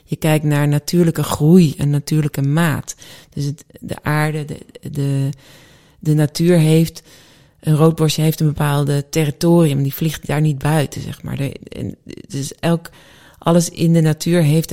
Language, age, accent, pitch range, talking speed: Dutch, 40-59, Dutch, 145-160 Hz, 150 wpm